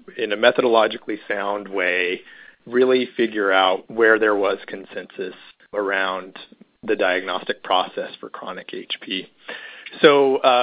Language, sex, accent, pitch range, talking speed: English, male, American, 100-130 Hz, 120 wpm